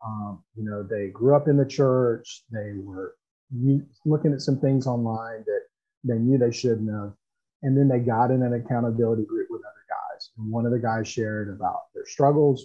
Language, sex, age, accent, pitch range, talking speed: English, male, 40-59, American, 120-145 Hz, 200 wpm